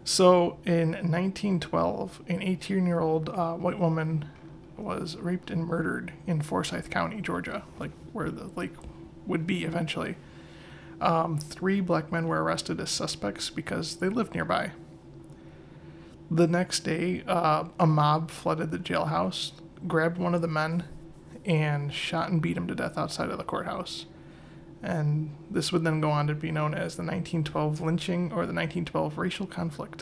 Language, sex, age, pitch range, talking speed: English, male, 20-39, 155-175 Hz, 155 wpm